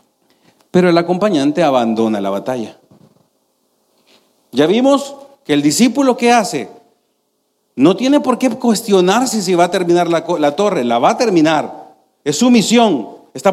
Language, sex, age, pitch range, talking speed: Spanish, male, 40-59, 140-200 Hz, 145 wpm